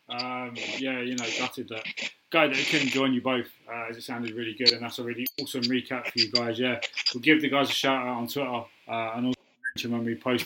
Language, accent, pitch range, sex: English, British, 120-145 Hz, male